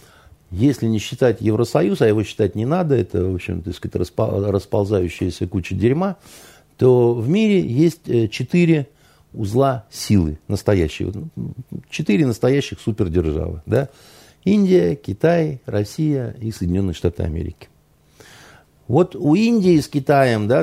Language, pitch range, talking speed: Russian, 105-150 Hz, 115 wpm